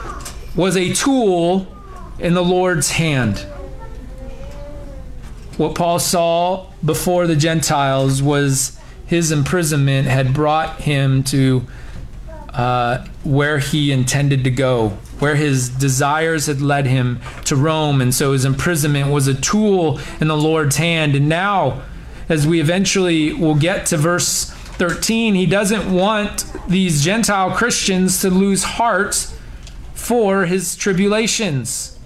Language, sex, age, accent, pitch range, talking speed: English, male, 30-49, American, 135-180 Hz, 125 wpm